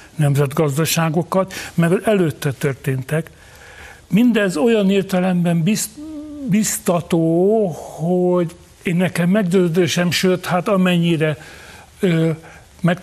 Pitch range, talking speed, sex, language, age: 150-185 Hz, 75 wpm, male, Hungarian, 60-79